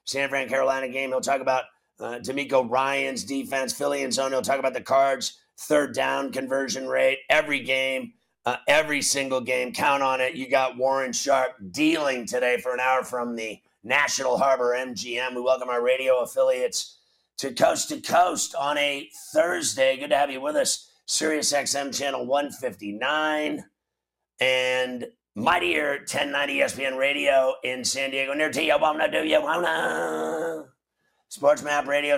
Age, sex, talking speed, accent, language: 50-69, male, 160 wpm, American, English